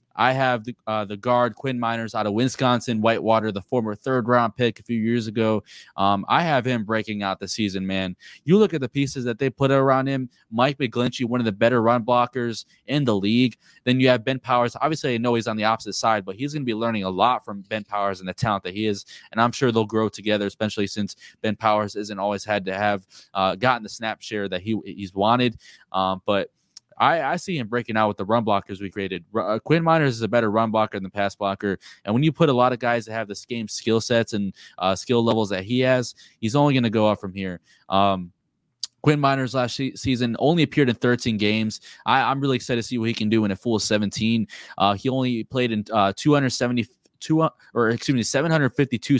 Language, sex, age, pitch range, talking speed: English, male, 20-39, 105-125 Hz, 245 wpm